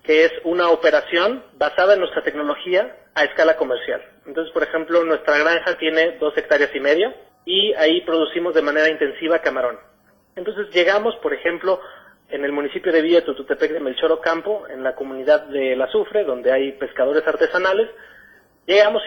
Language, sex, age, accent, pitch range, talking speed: Spanish, male, 30-49, Mexican, 160-210 Hz, 160 wpm